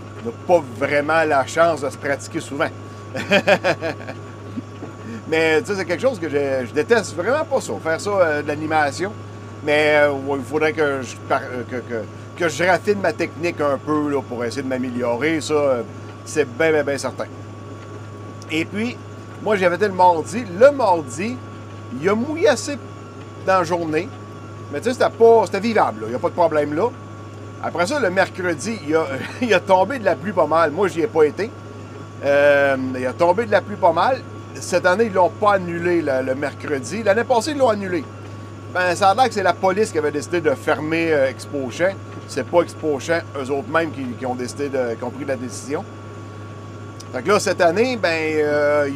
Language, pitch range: French, 110-170 Hz